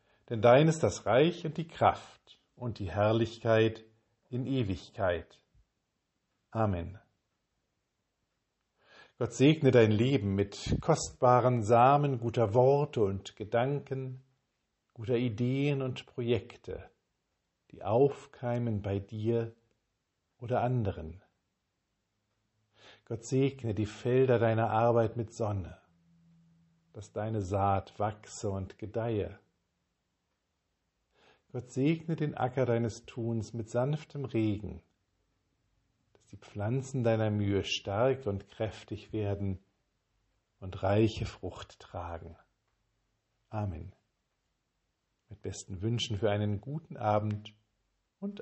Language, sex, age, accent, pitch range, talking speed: German, male, 50-69, German, 100-125 Hz, 100 wpm